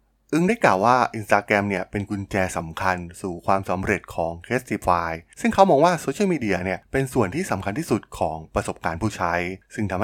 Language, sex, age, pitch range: Thai, male, 20-39, 95-125 Hz